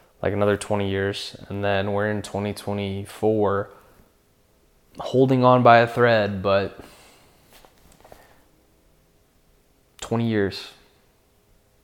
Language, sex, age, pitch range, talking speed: English, male, 20-39, 100-120 Hz, 85 wpm